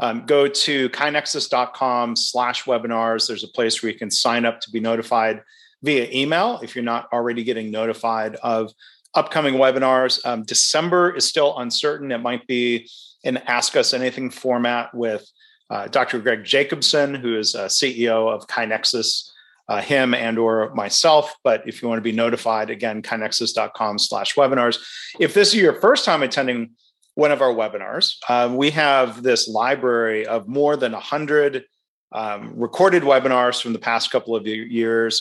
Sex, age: male, 40-59